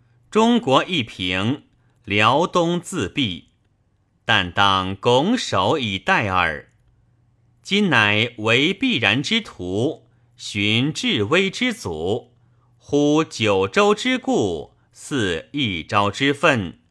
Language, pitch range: Chinese, 105-140 Hz